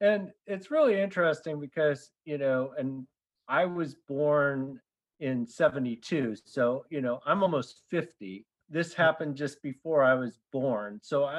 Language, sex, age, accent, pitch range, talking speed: English, male, 40-59, American, 125-155 Hz, 140 wpm